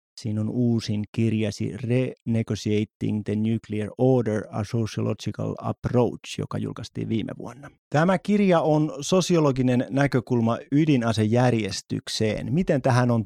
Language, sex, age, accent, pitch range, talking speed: Finnish, male, 30-49, native, 110-135 Hz, 110 wpm